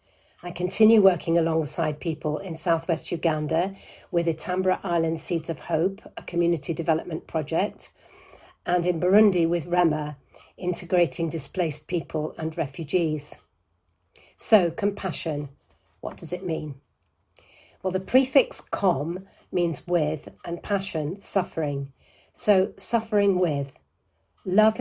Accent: British